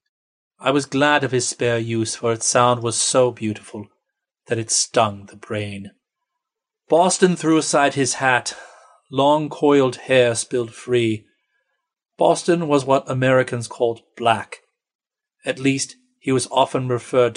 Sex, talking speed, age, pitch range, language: male, 140 wpm, 40-59, 110-140 Hz, English